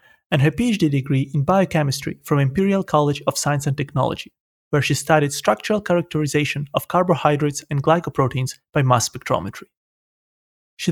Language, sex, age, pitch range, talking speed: English, male, 30-49, 140-175 Hz, 145 wpm